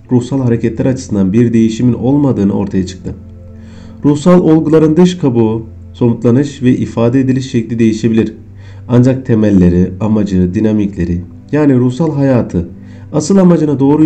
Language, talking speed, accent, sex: Turkish, 120 wpm, native, male